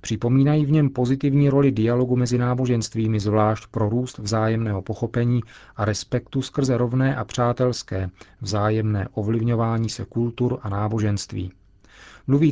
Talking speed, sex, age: 125 wpm, male, 40-59